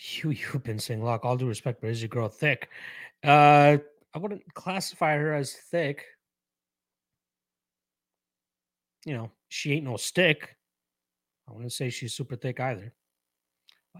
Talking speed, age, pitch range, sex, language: 145 wpm, 30-49, 105-145 Hz, male, English